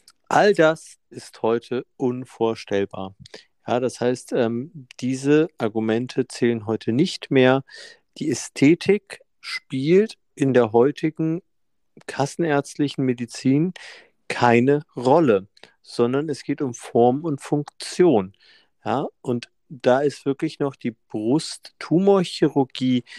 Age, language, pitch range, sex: 50-69, German, 115-155 Hz, male